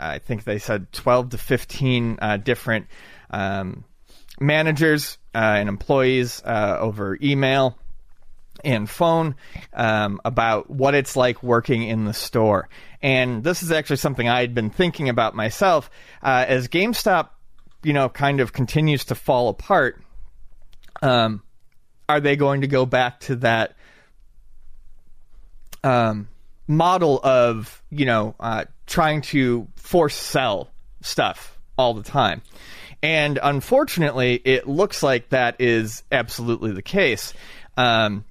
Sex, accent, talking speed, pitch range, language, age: male, American, 130 wpm, 115-145 Hz, English, 30-49